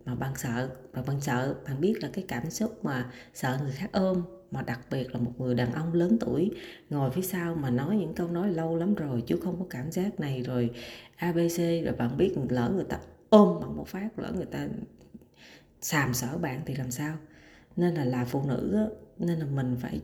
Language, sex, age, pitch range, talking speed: Vietnamese, female, 20-39, 130-180 Hz, 220 wpm